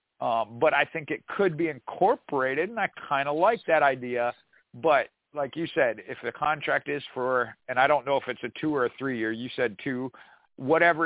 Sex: male